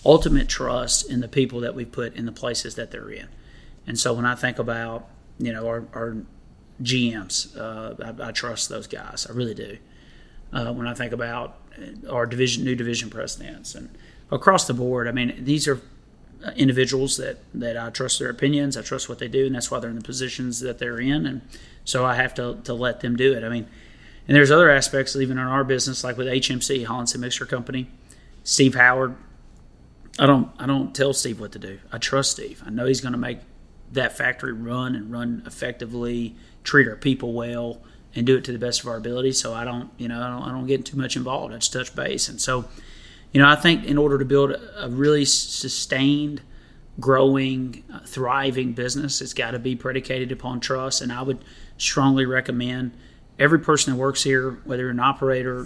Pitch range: 120-135 Hz